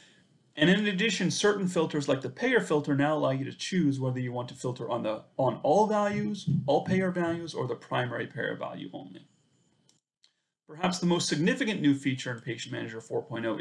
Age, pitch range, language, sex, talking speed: 30-49, 125-175 Hz, English, male, 190 wpm